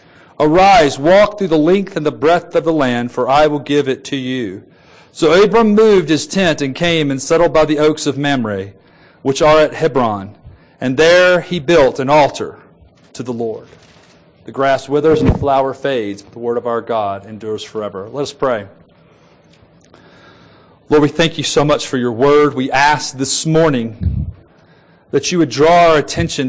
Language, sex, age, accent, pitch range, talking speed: English, male, 40-59, American, 130-165 Hz, 185 wpm